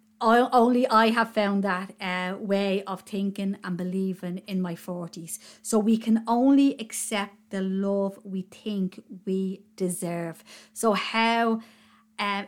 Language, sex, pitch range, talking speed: English, female, 185-215 Hz, 135 wpm